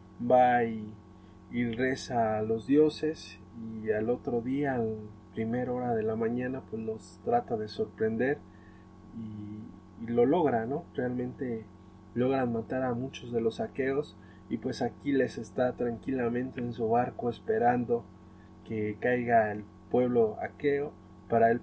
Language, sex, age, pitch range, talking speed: Spanish, male, 20-39, 105-135 Hz, 145 wpm